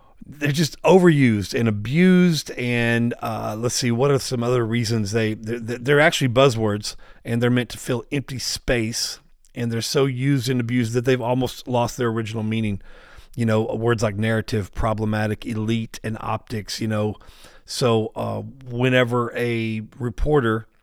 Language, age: English, 40-59